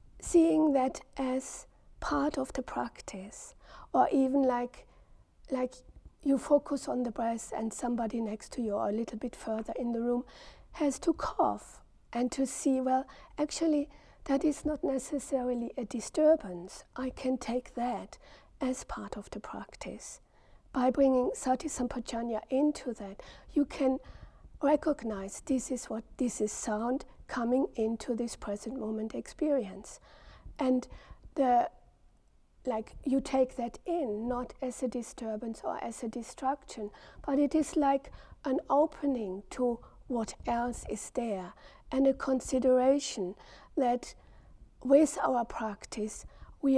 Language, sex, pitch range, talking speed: English, female, 235-275 Hz, 135 wpm